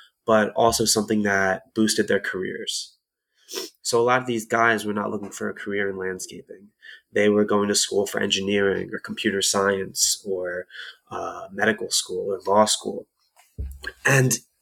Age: 20-39